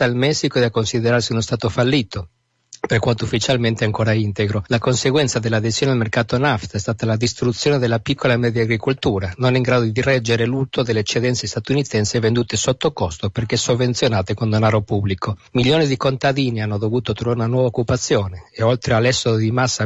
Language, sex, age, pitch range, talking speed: Italian, male, 50-69, 110-125 Hz, 180 wpm